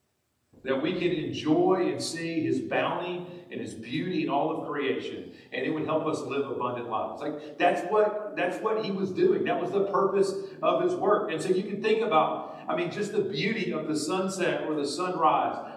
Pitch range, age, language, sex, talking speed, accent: 130-180 Hz, 40-59, English, male, 210 wpm, American